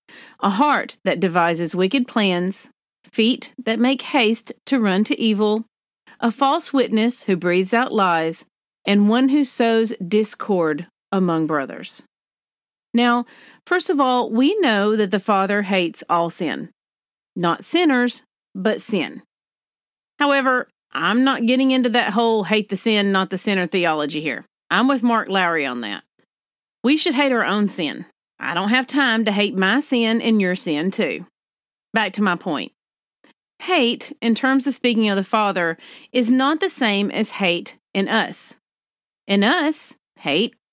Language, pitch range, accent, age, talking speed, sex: English, 195-255 Hz, American, 40-59, 155 wpm, female